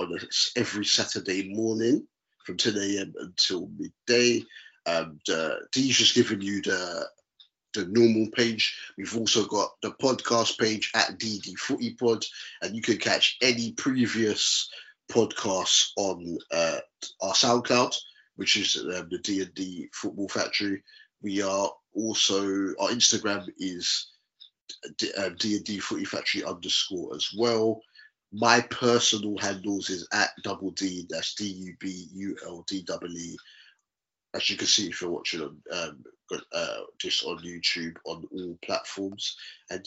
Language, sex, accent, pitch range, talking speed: English, male, British, 95-120 Hz, 130 wpm